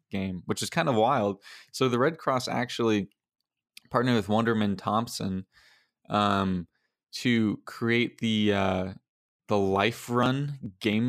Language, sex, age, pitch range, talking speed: English, male, 20-39, 100-110 Hz, 130 wpm